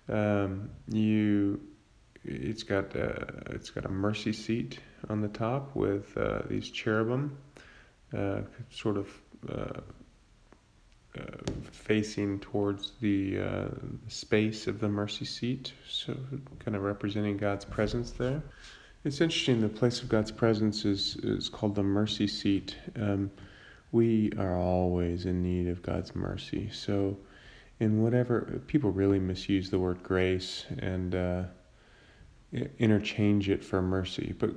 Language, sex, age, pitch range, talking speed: English, male, 30-49, 95-110 Hz, 130 wpm